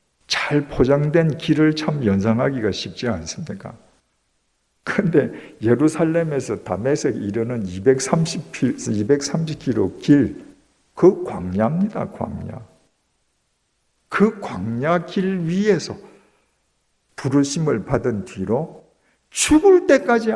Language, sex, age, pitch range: Korean, male, 50-69, 130-185 Hz